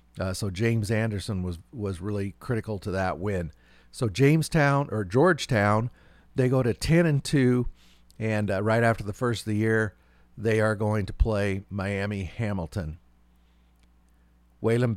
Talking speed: 150 wpm